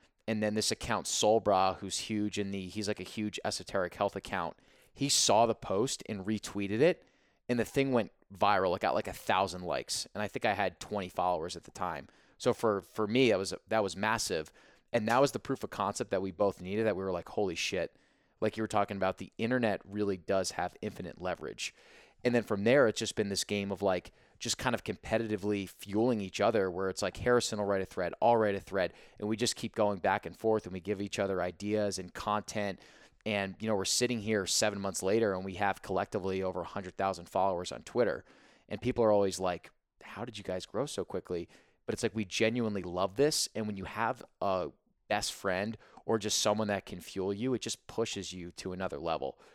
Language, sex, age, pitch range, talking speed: English, male, 20-39, 95-110 Hz, 225 wpm